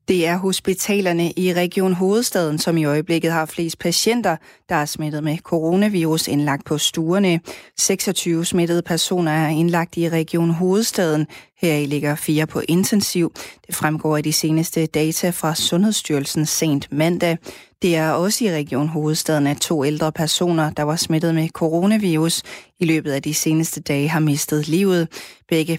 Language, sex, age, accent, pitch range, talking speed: Danish, female, 30-49, native, 150-170 Hz, 160 wpm